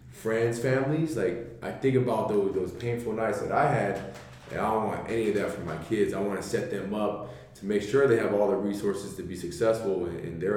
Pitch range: 100-120 Hz